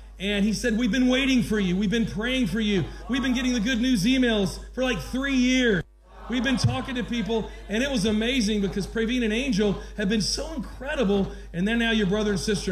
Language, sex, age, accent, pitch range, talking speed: English, male, 40-59, American, 185-240 Hz, 225 wpm